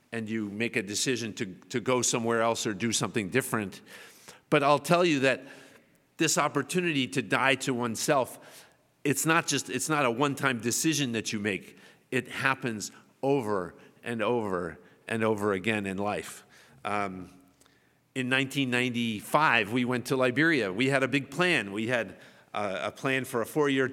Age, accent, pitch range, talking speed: 50-69, American, 110-140 Hz, 165 wpm